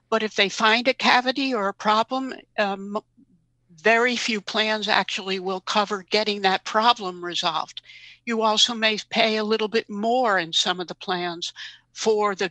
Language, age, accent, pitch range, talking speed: English, 60-79, American, 195-230 Hz, 170 wpm